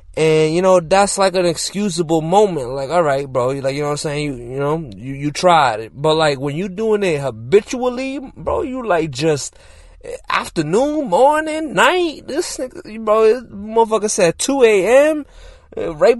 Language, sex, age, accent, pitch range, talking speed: English, male, 20-39, American, 140-215 Hz, 175 wpm